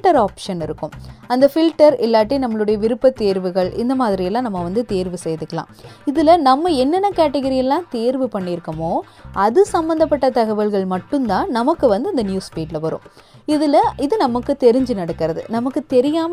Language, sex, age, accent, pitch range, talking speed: Tamil, female, 20-39, native, 185-280 Hz, 135 wpm